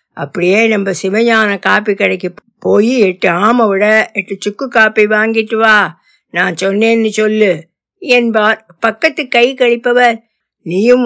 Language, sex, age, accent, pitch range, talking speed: Tamil, female, 60-79, native, 195-240 Hz, 70 wpm